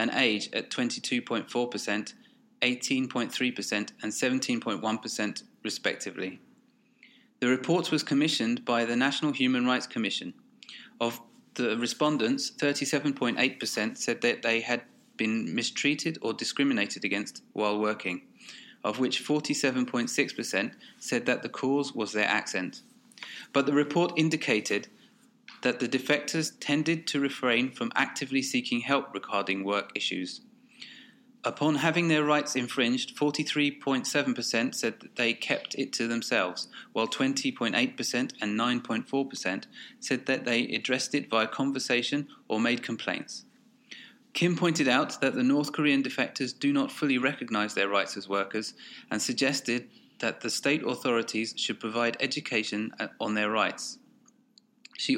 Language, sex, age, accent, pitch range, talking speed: English, male, 30-49, British, 115-175 Hz, 125 wpm